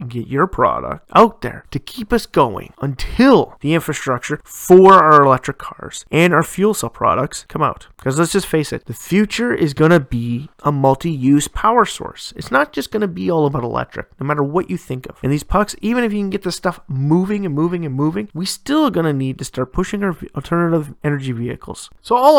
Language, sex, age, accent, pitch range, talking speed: English, male, 30-49, American, 135-180 Hz, 220 wpm